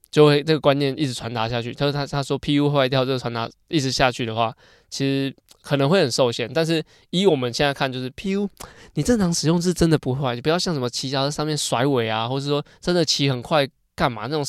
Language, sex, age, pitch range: Chinese, male, 20-39, 125-150 Hz